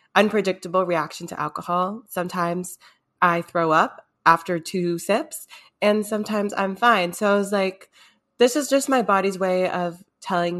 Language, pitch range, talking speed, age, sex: English, 175-210 Hz, 155 wpm, 20-39, female